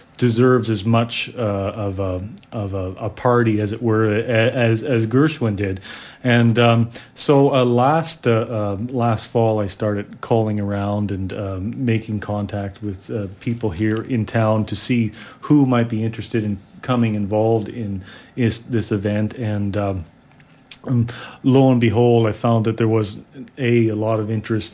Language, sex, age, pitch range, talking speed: English, male, 40-59, 105-115 Hz, 170 wpm